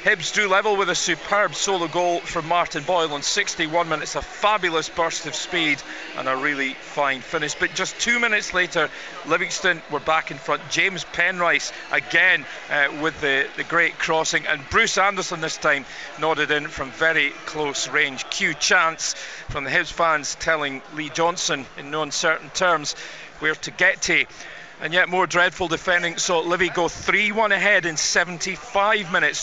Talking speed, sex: 170 wpm, male